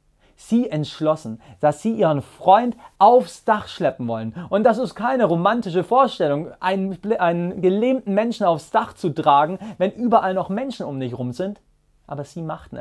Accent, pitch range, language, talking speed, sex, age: German, 135-190 Hz, German, 165 wpm, male, 30-49